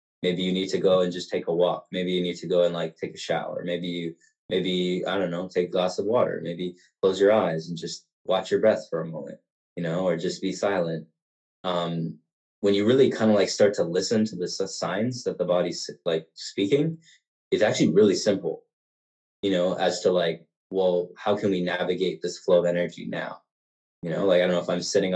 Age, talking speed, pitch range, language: 20-39, 225 wpm, 85-95 Hz, English